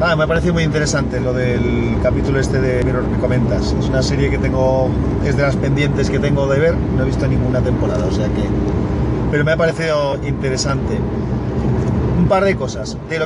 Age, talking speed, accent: 40-59, 210 wpm, Spanish